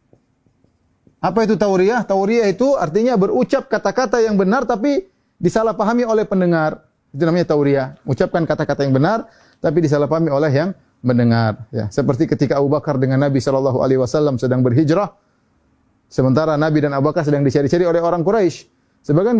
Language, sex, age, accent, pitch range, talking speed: Indonesian, male, 30-49, native, 130-190 Hz, 145 wpm